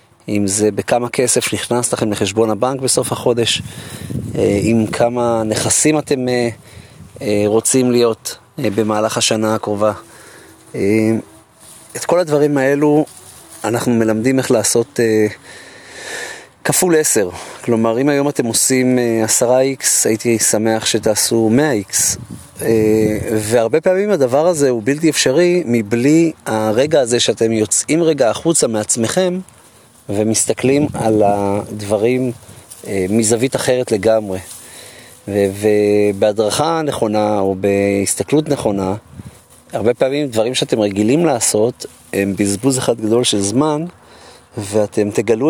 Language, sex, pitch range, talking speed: Hebrew, male, 110-135 Hz, 110 wpm